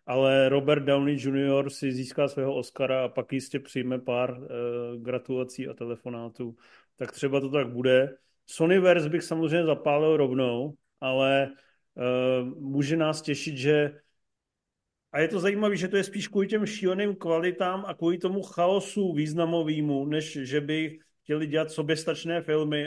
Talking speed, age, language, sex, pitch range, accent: 150 wpm, 40-59, Czech, male, 130-155 Hz, native